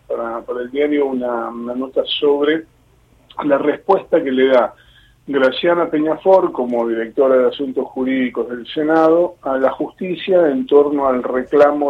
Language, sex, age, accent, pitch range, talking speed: Spanish, male, 40-59, Argentinian, 135-195 Hz, 145 wpm